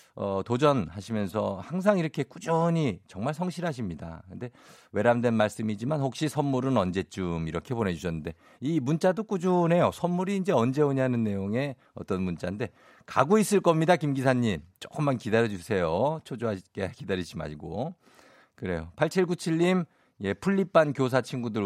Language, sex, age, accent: Korean, male, 50-69, native